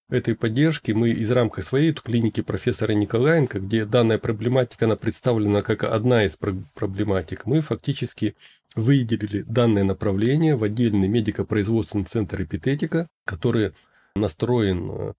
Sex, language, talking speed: male, Russian, 120 wpm